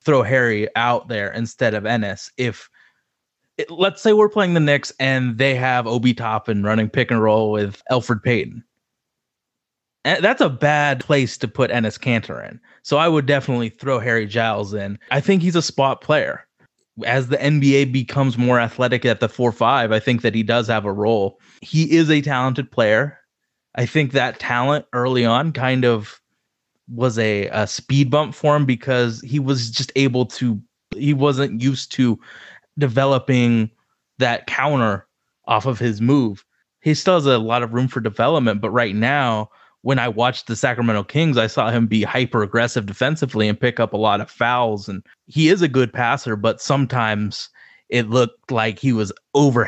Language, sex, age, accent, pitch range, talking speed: English, male, 20-39, American, 115-140 Hz, 180 wpm